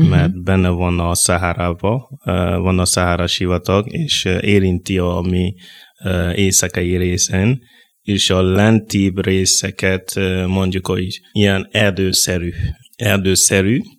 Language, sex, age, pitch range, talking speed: Hungarian, male, 20-39, 90-100 Hz, 100 wpm